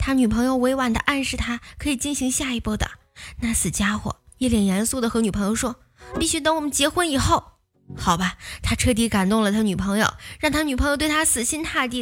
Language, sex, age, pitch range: Chinese, female, 10-29, 220-285 Hz